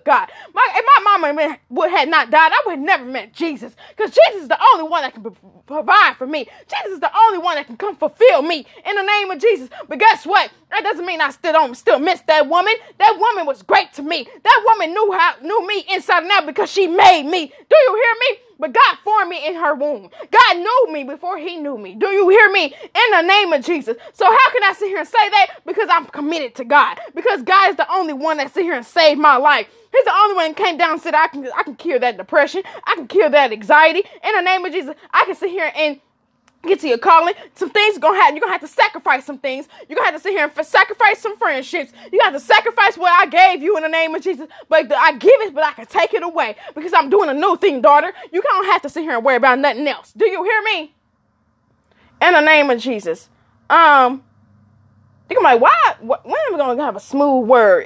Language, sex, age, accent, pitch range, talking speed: English, female, 20-39, American, 290-400 Hz, 260 wpm